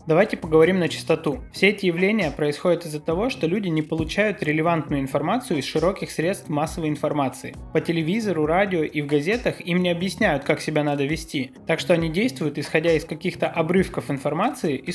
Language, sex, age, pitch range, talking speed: Russian, male, 20-39, 150-180 Hz, 175 wpm